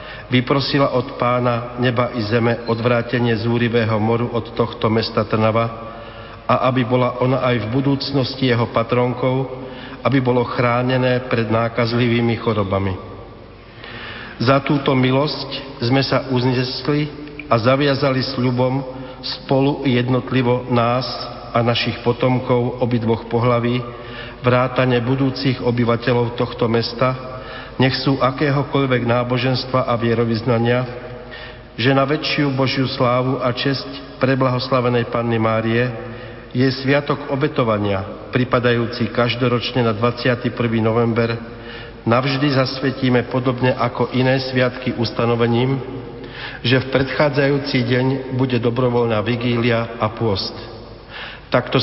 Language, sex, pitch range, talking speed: Slovak, male, 115-130 Hz, 110 wpm